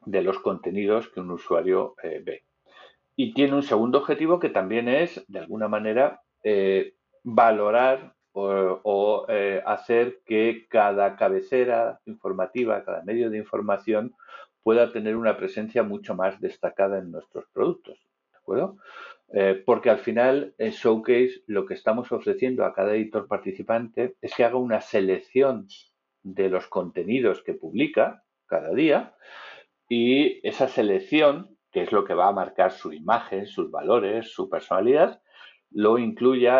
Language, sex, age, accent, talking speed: Spanish, male, 50-69, Spanish, 145 wpm